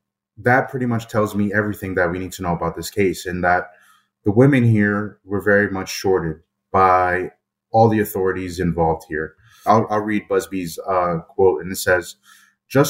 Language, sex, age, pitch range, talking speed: English, male, 30-49, 95-115 Hz, 180 wpm